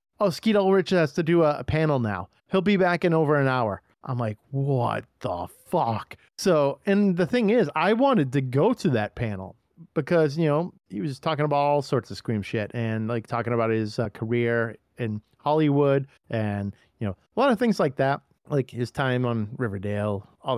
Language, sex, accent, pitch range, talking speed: English, male, American, 115-155 Hz, 200 wpm